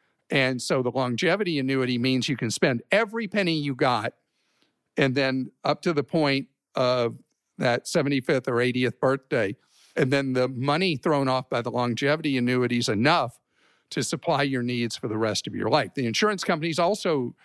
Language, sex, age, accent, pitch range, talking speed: English, male, 50-69, American, 125-165 Hz, 180 wpm